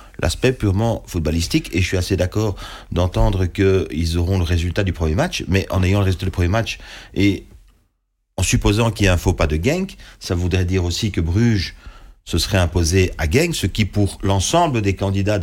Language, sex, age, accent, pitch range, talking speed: French, male, 40-59, French, 85-105 Hz, 200 wpm